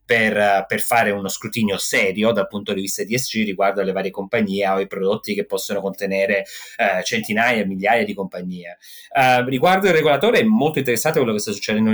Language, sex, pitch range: Italian, male, 105-150 Hz